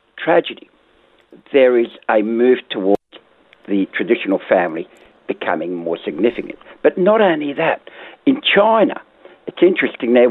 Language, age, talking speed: English, 60-79, 120 wpm